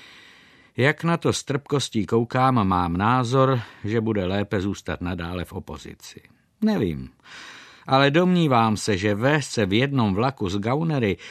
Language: Czech